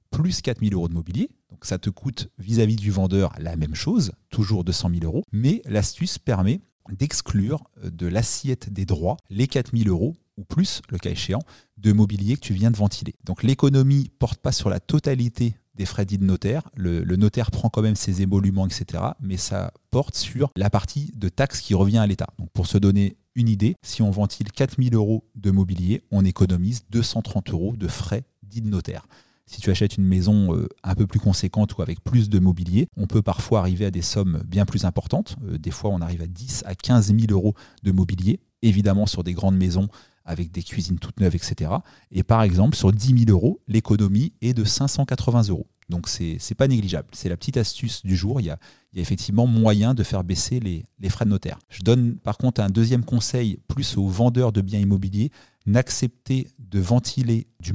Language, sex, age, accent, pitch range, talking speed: French, male, 30-49, French, 95-120 Hz, 210 wpm